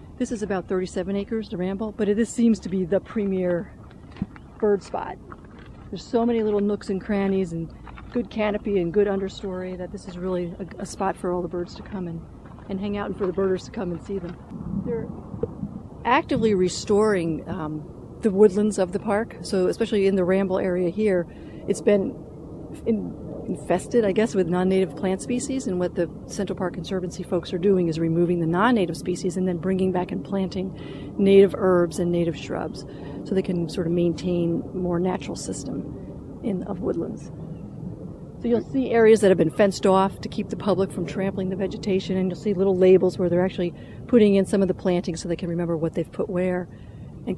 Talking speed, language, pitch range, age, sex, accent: 200 wpm, English, 180-205 Hz, 40-59, female, American